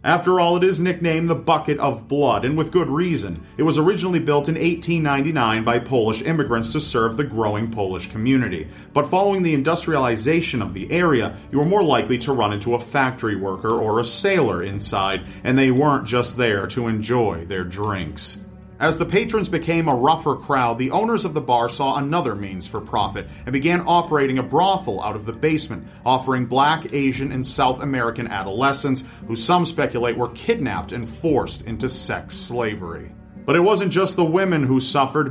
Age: 40-59